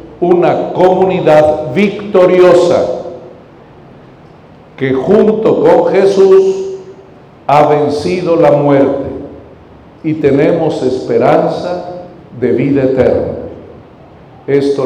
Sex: male